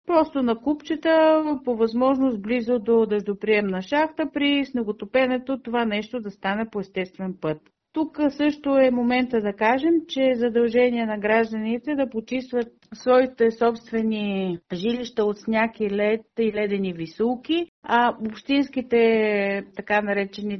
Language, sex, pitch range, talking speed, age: Bulgarian, female, 200-255 Hz, 125 wpm, 50-69